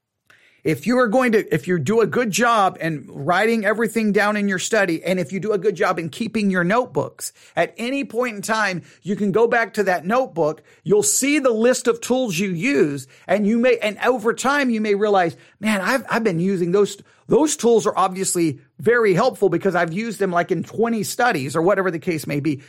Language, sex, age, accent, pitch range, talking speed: English, male, 40-59, American, 190-240 Hz, 220 wpm